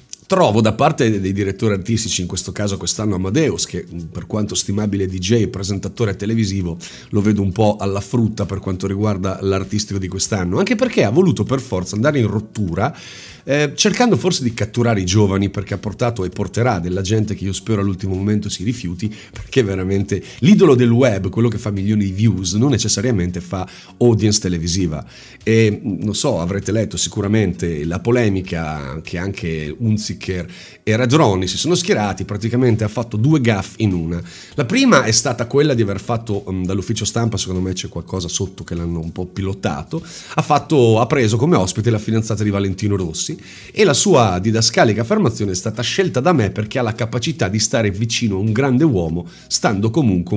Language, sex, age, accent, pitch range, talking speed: Italian, male, 40-59, native, 95-120 Hz, 185 wpm